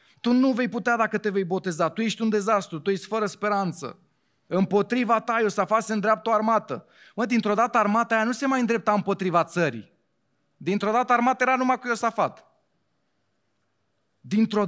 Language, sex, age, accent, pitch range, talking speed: Romanian, male, 30-49, native, 115-190 Hz, 170 wpm